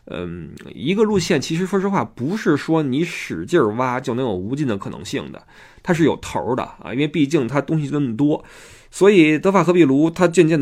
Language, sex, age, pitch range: Chinese, male, 20-39, 125-180 Hz